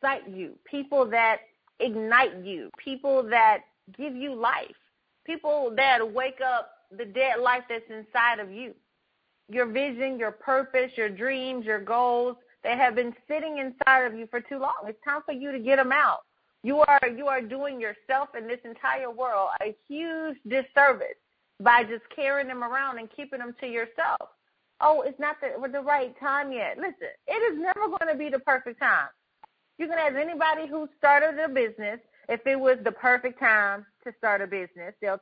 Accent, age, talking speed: American, 30-49, 180 wpm